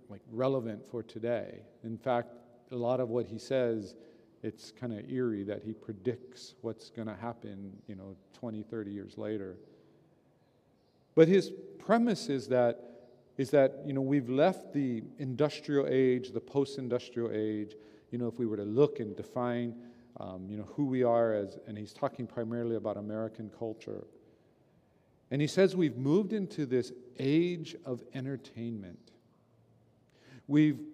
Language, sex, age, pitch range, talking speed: English, male, 40-59, 115-140 Hz, 155 wpm